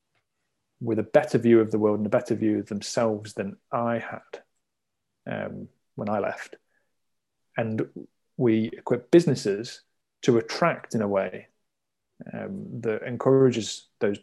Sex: male